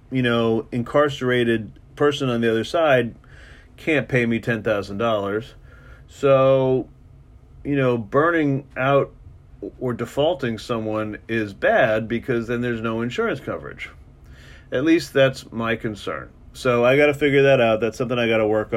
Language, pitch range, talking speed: English, 100-130 Hz, 155 wpm